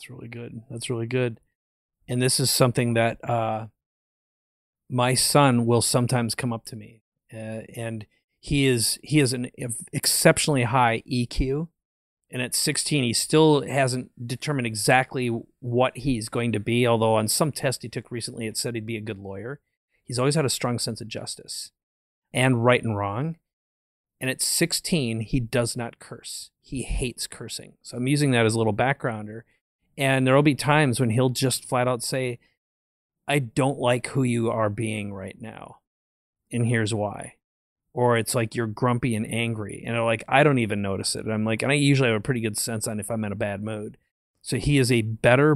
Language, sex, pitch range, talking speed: English, male, 110-130 Hz, 195 wpm